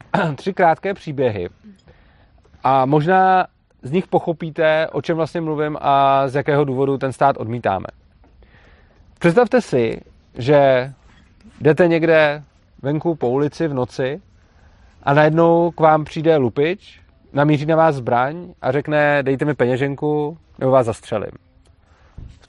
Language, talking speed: Czech, 130 wpm